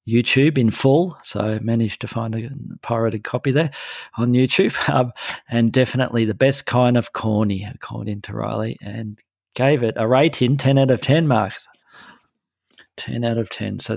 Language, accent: English, Australian